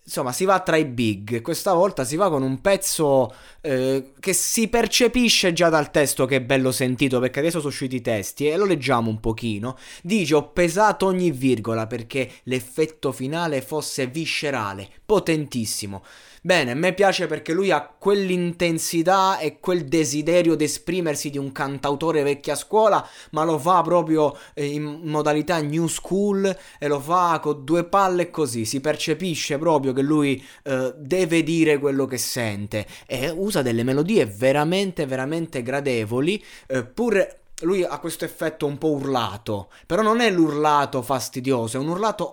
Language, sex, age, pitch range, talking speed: Italian, male, 20-39, 125-170 Hz, 160 wpm